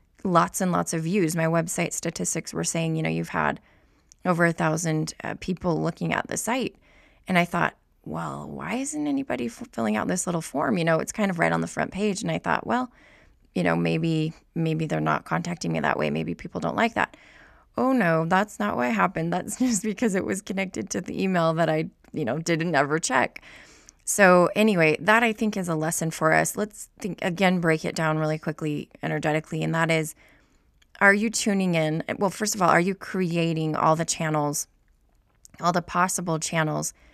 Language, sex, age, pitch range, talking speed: English, female, 20-39, 155-195 Hz, 205 wpm